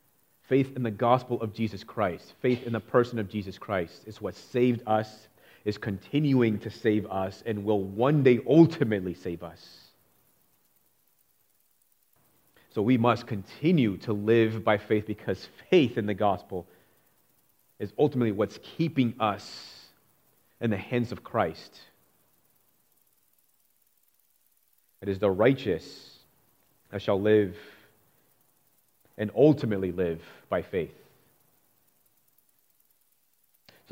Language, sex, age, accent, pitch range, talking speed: English, male, 30-49, American, 100-120 Hz, 115 wpm